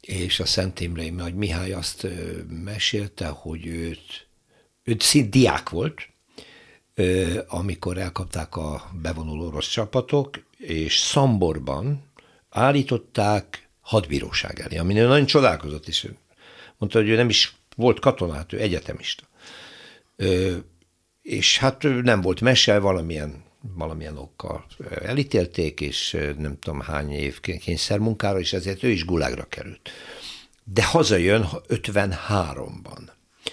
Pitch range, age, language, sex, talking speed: 80-110 Hz, 60-79, Hungarian, male, 115 wpm